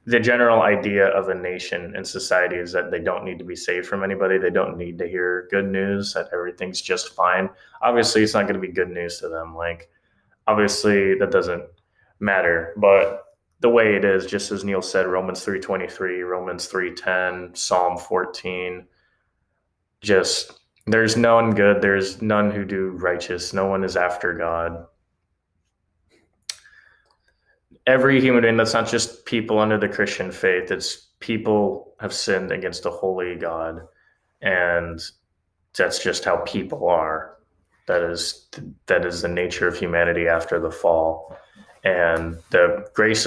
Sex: male